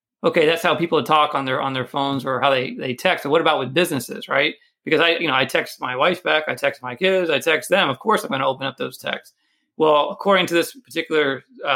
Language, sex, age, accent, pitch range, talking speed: English, male, 30-49, American, 140-170 Hz, 270 wpm